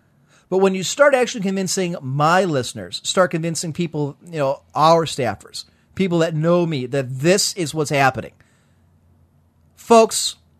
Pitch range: 155-240 Hz